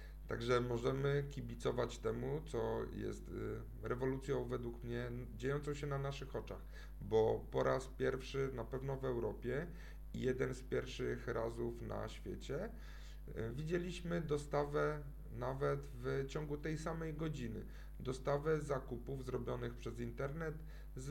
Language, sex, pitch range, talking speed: Polish, male, 115-150 Hz, 120 wpm